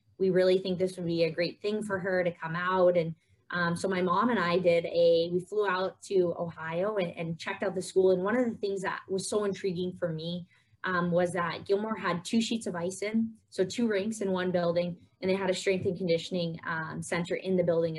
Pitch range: 170-195 Hz